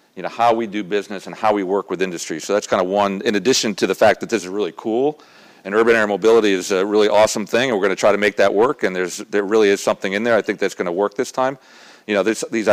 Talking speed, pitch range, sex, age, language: 305 wpm, 95-120 Hz, male, 40-59, English